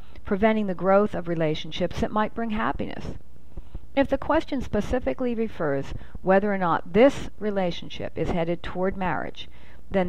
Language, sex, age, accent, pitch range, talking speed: English, female, 40-59, American, 170-220 Hz, 145 wpm